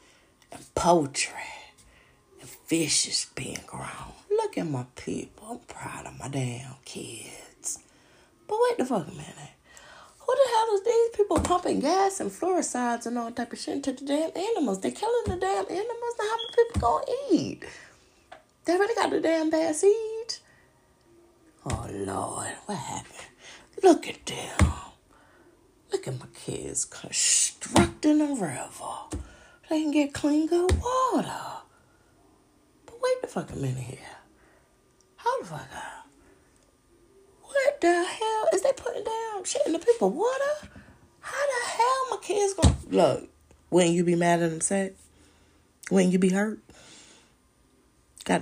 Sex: female